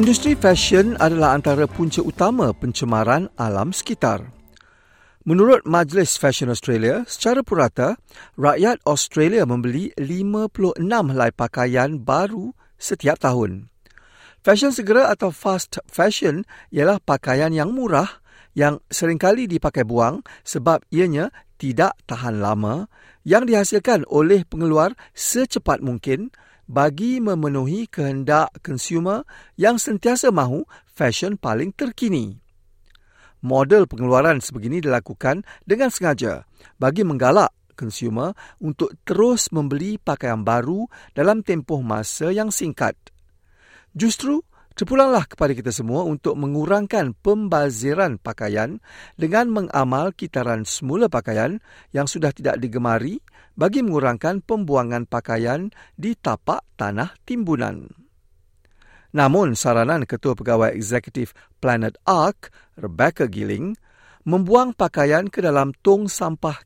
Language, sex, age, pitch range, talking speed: Malay, male, 50-69, 125-200 Hz, 105 wpm